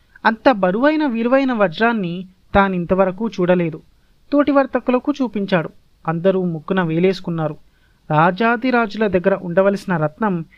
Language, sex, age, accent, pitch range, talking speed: Telugu, male, 30-49, native, 170-225 Hz, 85 wpm